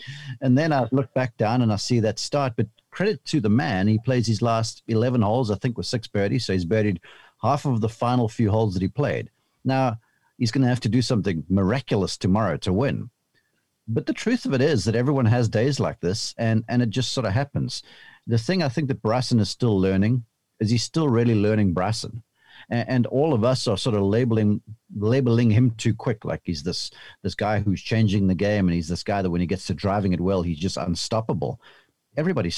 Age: 50-69